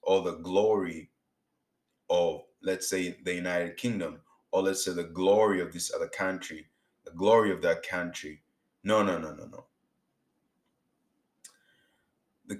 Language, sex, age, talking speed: English, male, 30-49, 140 wpm